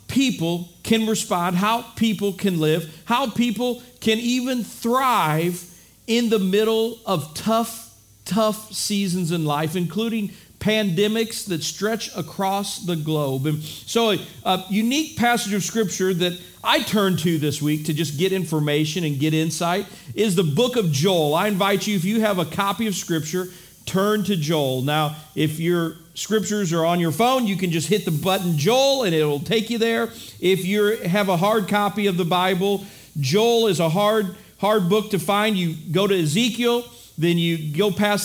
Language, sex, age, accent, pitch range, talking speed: English, male, 50-69, American, 170-220 Hz, 175 wpm